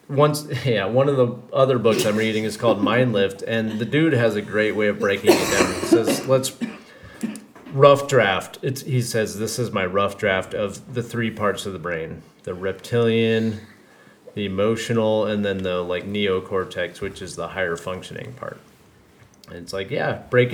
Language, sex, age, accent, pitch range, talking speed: English, male, 30-49, American, 100-125 Hz, 185 wpm